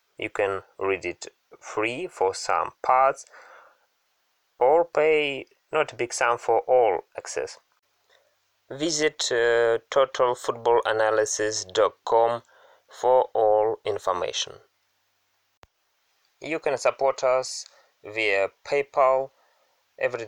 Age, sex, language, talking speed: 20-39, male, English, 90 wpm